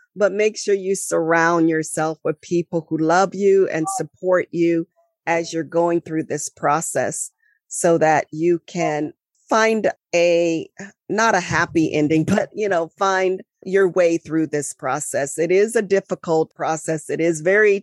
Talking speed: 160 wpm